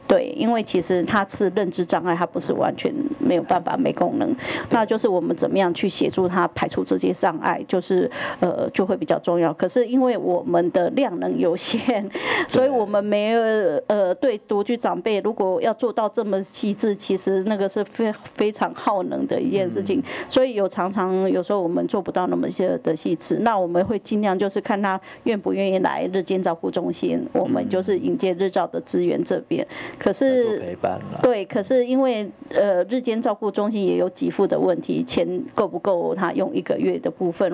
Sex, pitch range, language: female, 185-225 Hz, Chinese